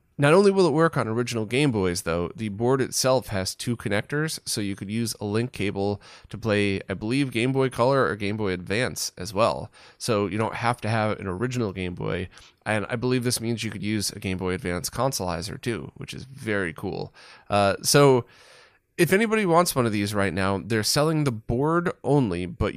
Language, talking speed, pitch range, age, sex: English, 210 wpm, 100-130 Hz, 20-39, male